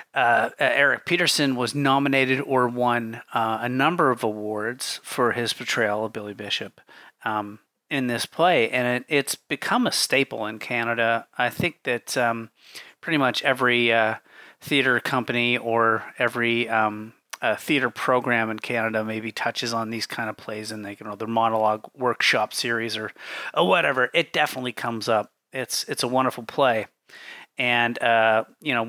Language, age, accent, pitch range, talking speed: English, 30-49, American, 115-145 Hz, 165 wpm